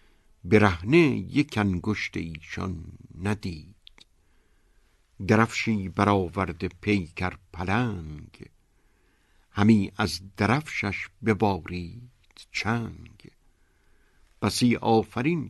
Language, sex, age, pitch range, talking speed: Persian, male, 60-79, 85-110 Hz, 60 wpm